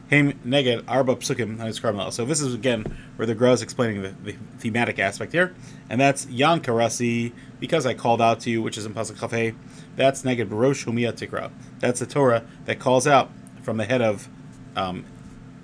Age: 30-49